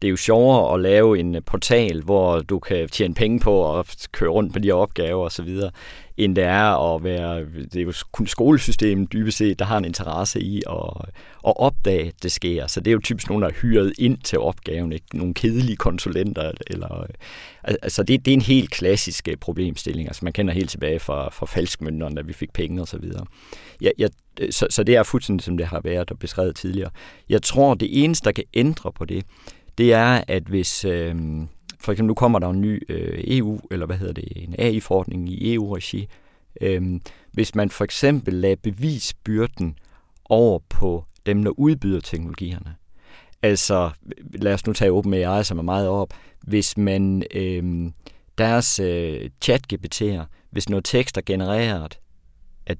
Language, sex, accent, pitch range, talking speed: Danish, male, native, 85-110 Hz, 185 wpm